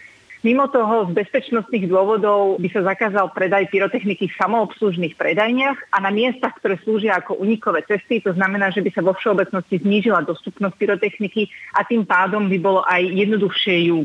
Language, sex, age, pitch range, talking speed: Slovak, female, 30-49, 180-215 Hz, 165 wpm